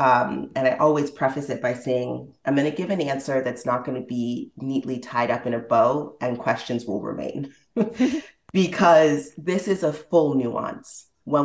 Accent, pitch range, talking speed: American, 125-170 Hz, 190 wpm